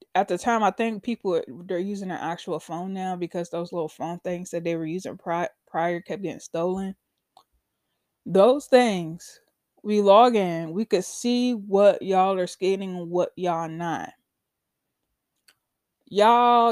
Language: English